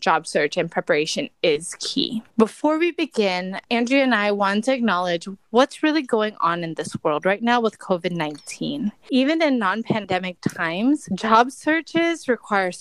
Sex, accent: female, American